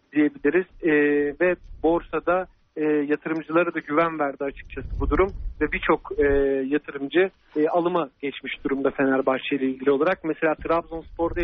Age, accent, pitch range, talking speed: 40-59, native, 145-175 Hz, 135 wpm